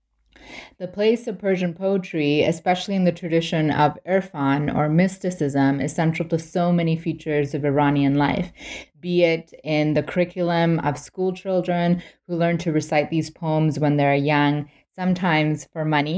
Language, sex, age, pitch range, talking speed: English, female, 20-39, 145-180 Hz, 155 wpm